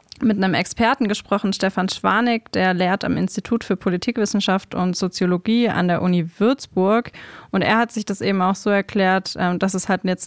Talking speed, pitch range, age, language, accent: 180 wpm, 180-210 Hz, 20-39, German, German